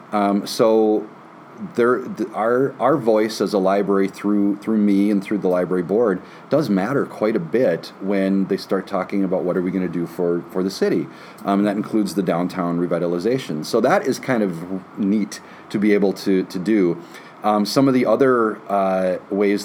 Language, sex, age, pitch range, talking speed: English, male, 30-49, 95-110 Hz, 195 wpm